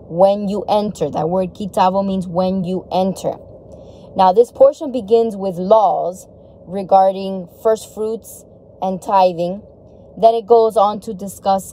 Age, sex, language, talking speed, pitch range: 10-29, female, English, 140 wpm, 190-240 Hz